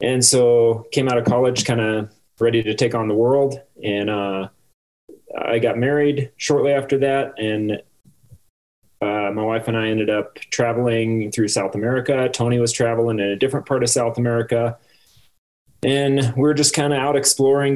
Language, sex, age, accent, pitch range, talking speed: English, male, 30-49, American, 105-125 Hz, 170 wpm